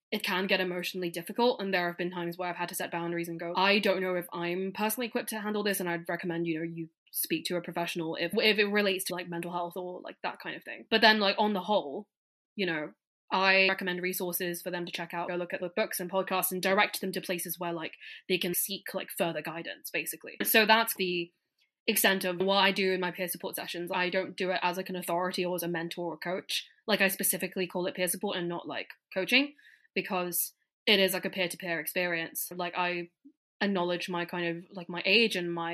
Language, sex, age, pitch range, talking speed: English, female, 10-29, 175-195 Hz, 245 wpm